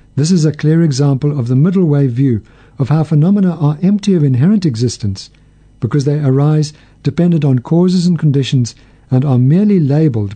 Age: 60-79